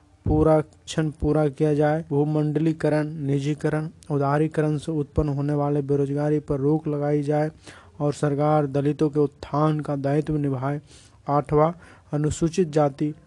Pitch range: 145-155 Hz